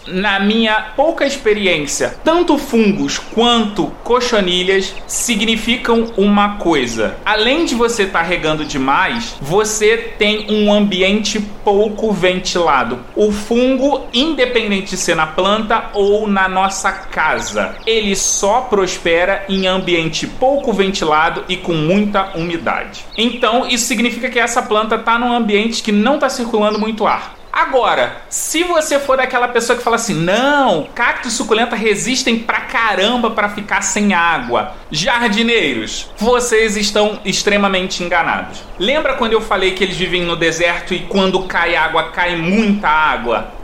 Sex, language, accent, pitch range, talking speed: male, Portuguese, Brazilian, 190-235 Hz, 140 wpm